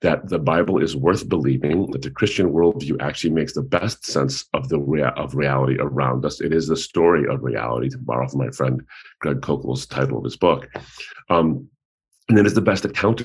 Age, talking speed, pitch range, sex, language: 40-59, 215 wpm, 70-110 Hz, male, English